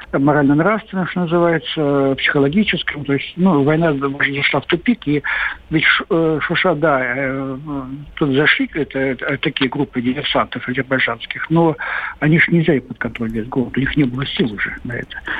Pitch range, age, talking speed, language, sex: 135-170 Hz, 60-79, 160 wpm, Russian, male